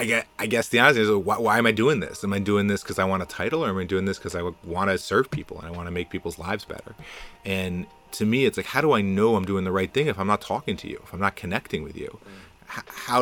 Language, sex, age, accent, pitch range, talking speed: English, male, 30-49, American, 90-100 Hz, 300 wpm